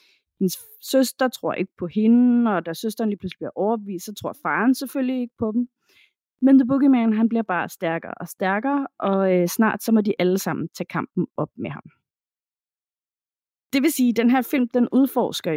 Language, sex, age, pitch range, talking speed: Danish, female, 30-49, 180-240 Hz, 190 wpm